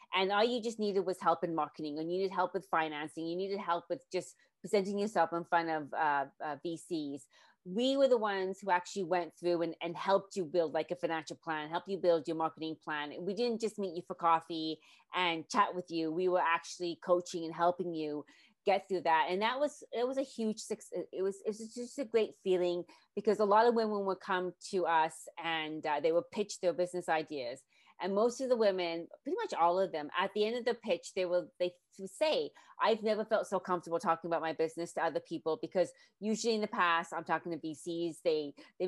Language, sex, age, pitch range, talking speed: English, female, 30-49, 165-195 Hz, 230 wpm